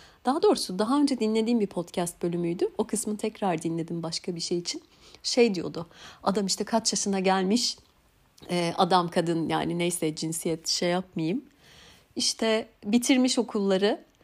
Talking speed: 140 wpm